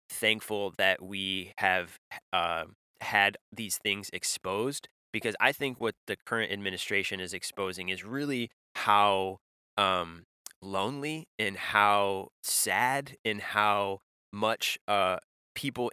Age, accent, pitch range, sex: 20-39, American, 95-115 Hz, male